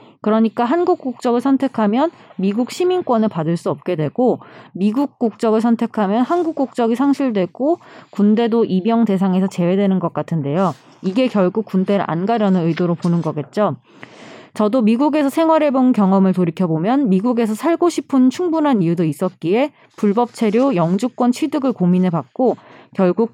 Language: Korean